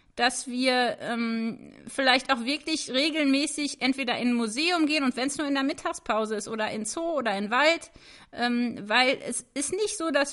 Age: 30-49